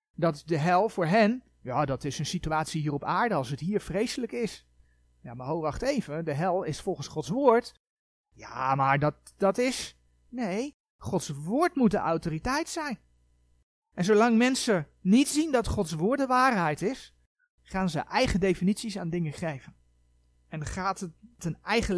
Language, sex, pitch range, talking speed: Dutch, male, 135-215 Hz, 175 wpm